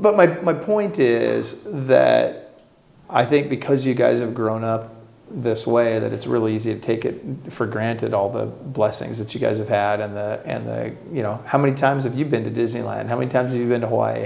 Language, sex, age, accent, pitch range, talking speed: English, male, 40-59, American, 115-135 Hz, 230 wpm